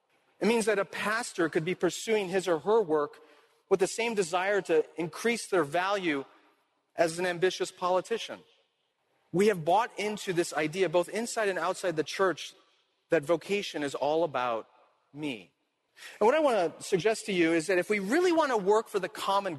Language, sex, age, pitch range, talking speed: English, male, 40-59, 155-200 Hz, 185 wpm